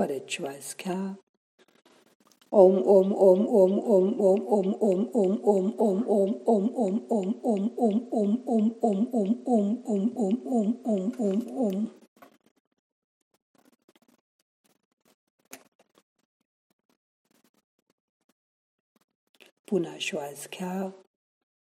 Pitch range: 195-235 Hz